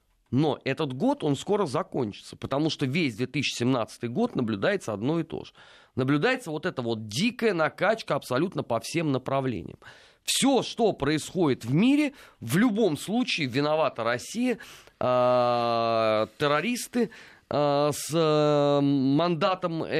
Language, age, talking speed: Russian, 30-49, 130 wpm